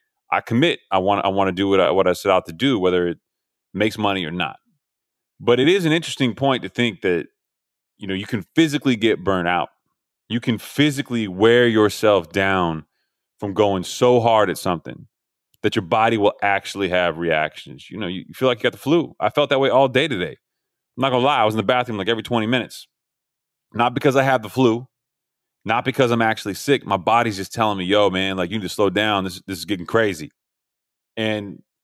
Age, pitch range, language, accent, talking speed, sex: 30-49, 90-120 Hz, English, American, 220 wpm, male